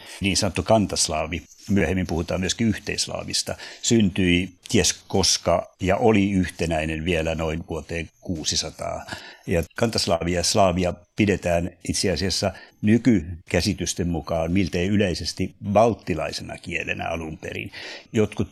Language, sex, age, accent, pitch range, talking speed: Finnish, male, 60-79, native, 85-105 Hz, 105 wpm